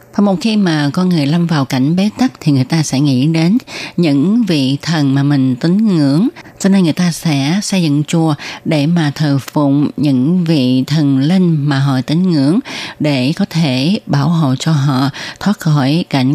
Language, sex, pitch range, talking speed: Vietnamese, female, 145-190 Hz, 195 wpm